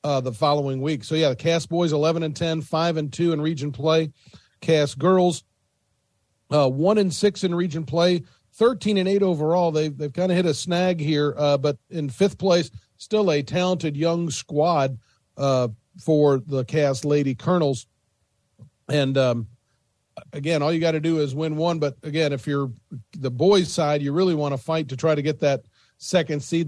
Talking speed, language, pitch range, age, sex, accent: 195 wpm, English, 135-165 Hz, 40-59, male, American